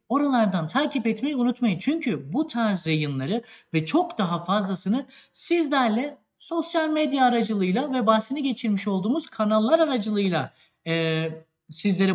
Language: Turkish